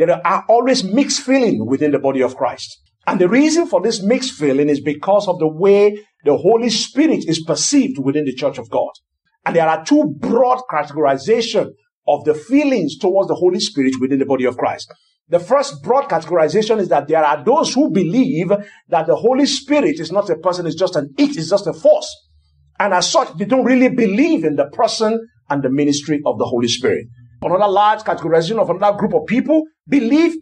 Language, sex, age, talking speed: English, male, 50-69, 205 wpm